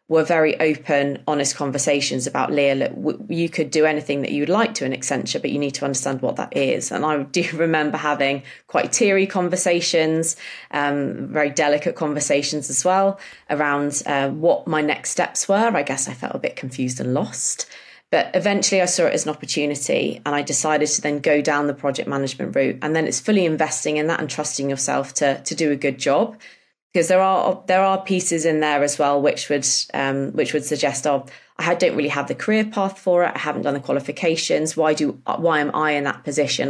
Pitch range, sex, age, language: 140-165 Hz, female, 20-39, English